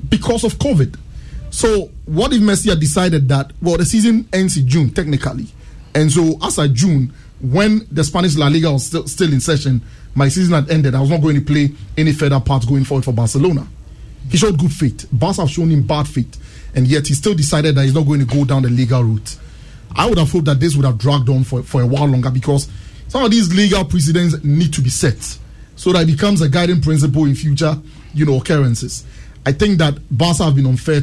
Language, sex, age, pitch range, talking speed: English, male, 30-49, 130-165 Hz, 230 wpm